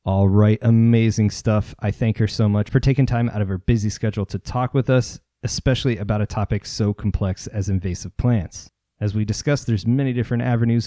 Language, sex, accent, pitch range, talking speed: English, male, American, 100-120 Hz, 205 wpm